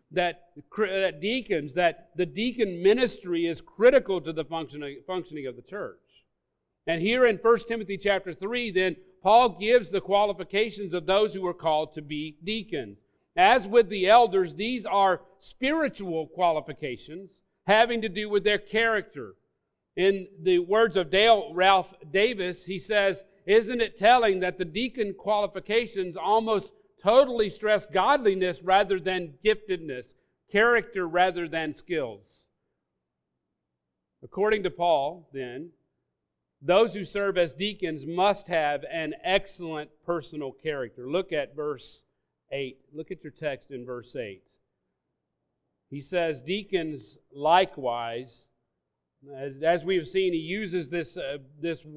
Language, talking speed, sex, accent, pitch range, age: English, 130 wpm, male, American, 155-205 Hz, 50-69